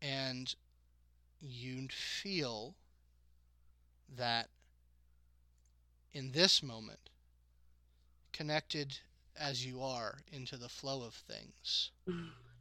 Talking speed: 75 wpm